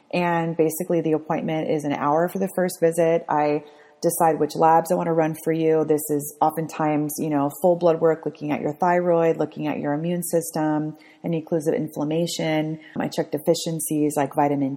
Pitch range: 155-180 Hz